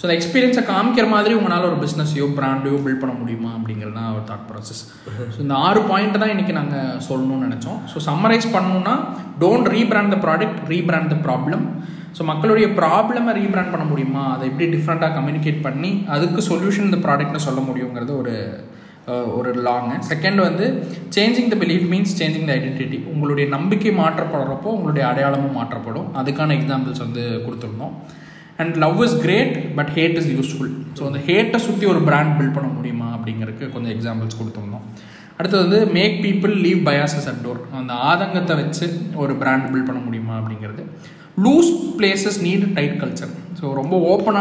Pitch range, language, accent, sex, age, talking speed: 130-190 Hz, Tamil, native, male, 20-39, 175 wpm